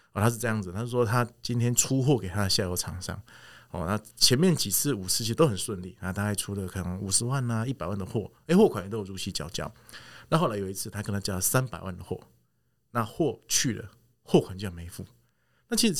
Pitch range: 95-125 Hz